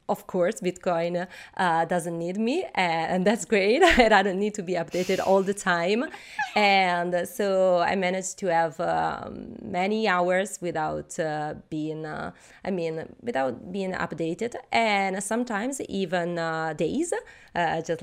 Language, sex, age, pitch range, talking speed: English, female, 20-39, 165-195 Hz, 145 wpm